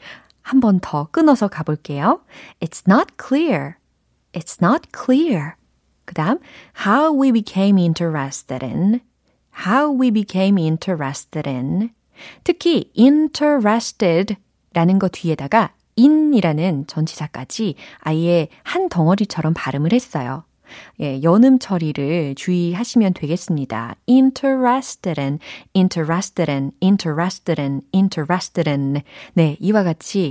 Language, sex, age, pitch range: Korean, female, 30-49, 155-225 Hz